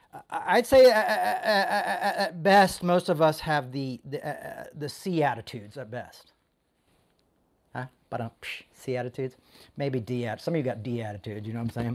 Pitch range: 130-190 Hz